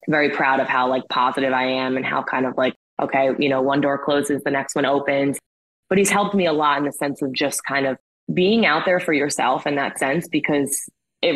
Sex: female